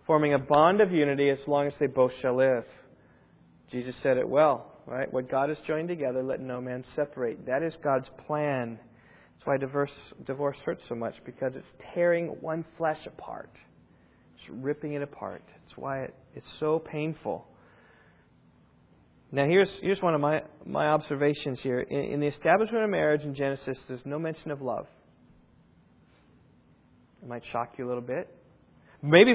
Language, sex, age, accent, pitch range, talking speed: English, male, 40-59, American, 140-185 Hz, 170 wpm